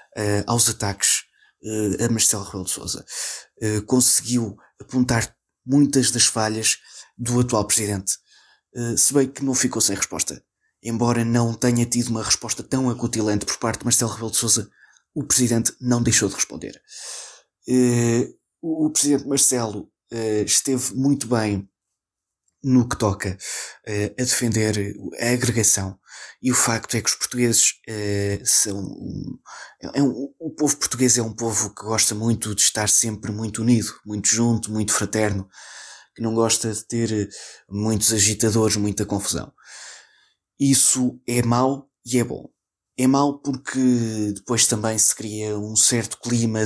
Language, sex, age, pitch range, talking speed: Portuguese, male, 20-39, 105-125 Hz, 140 wpm